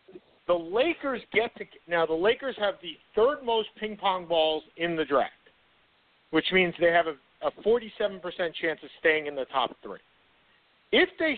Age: 50-69